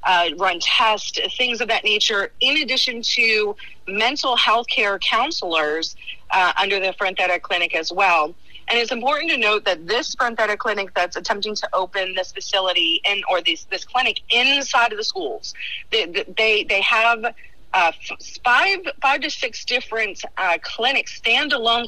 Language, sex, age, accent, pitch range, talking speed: English, female, 40-59, American, 190-255 Hz, 160 wpm